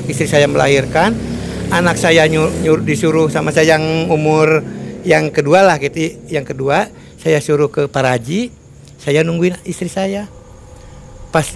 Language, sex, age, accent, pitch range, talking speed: Indonesian, male, 60-79, native, 145-190 Hz, 140 wpm